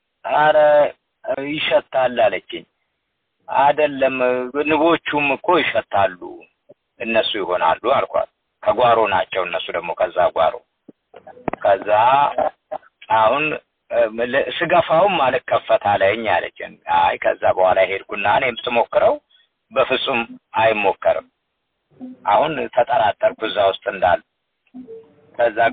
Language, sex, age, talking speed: Amharic, male, 50-69, 80 wpm